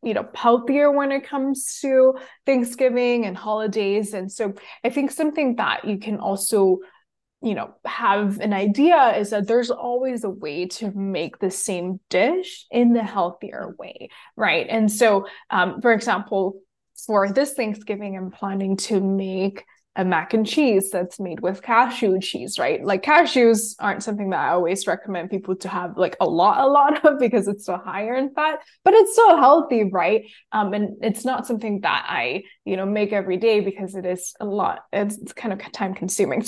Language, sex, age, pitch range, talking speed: English, female, 20-39, 195-245 Hz, 185 wpm